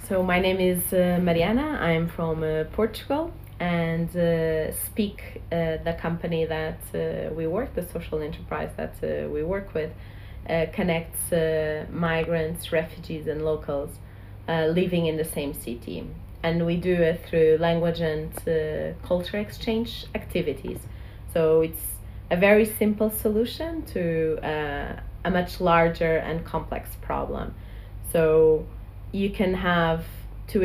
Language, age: English, 30-49